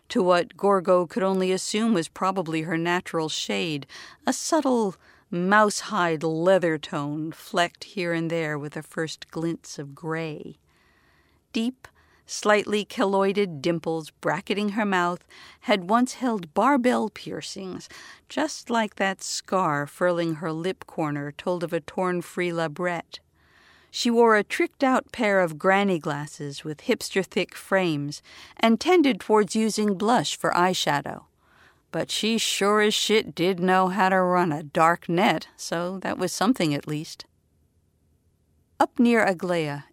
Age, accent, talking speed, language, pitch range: 50-69, American, 140 wpm, English, 155-200 Hz